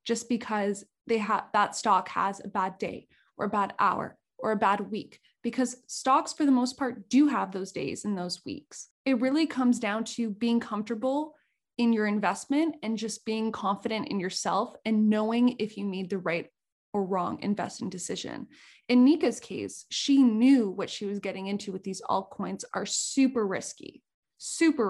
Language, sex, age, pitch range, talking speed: English, female, 20-39, 195-245 Hz, 180 wpm